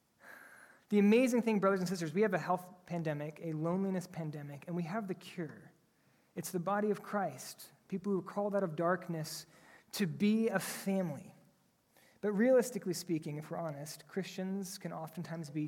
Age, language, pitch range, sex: 30-49, English, 170-205 Hz, male